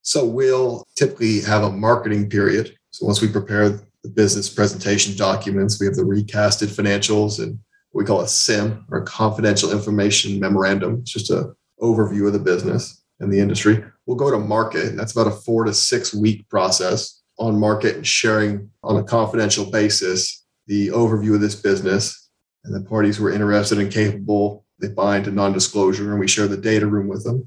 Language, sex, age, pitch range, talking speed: English, male, 30-49, 100-110 Hz, 190 wpm